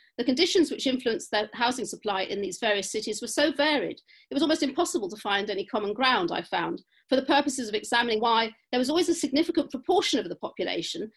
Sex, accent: female, British